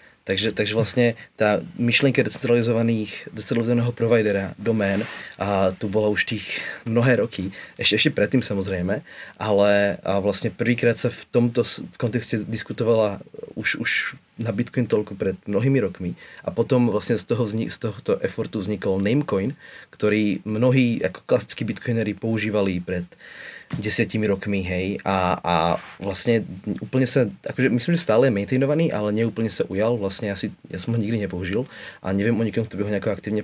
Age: 30-49